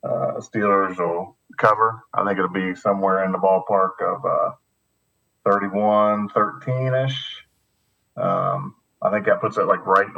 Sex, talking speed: male, 140 wpm